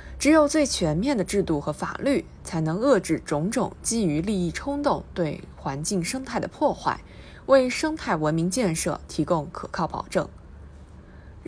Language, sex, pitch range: Chinese, female, 165-265 Hz